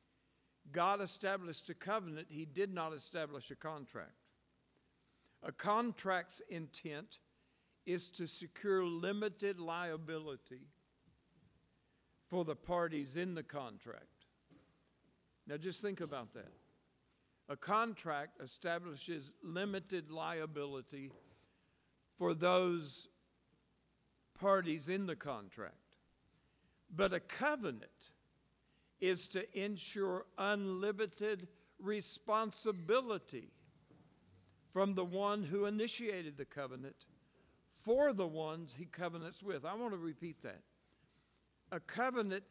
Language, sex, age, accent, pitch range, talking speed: English, male, 60-79, American, 160-205 Hz, 95 wpm